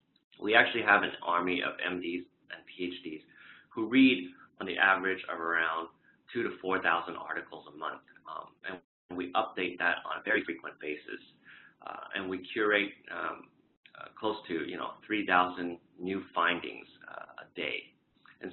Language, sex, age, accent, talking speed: English, male, 30-49, American, 160 wpm